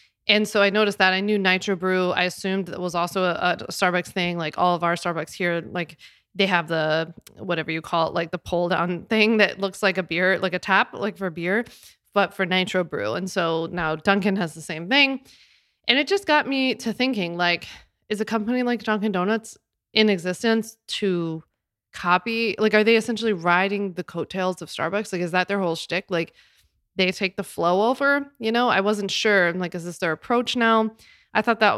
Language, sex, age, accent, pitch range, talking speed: English, female, 20-39, American, 175-210 Hz, 215 wpm